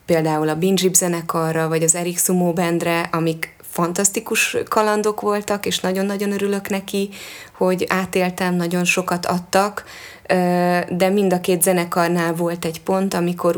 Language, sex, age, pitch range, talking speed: Hungarian, female, 20-39, 165-185 Hz, 135 wpm